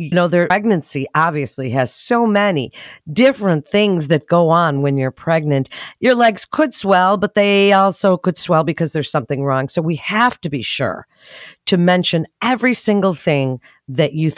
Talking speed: 175 wpm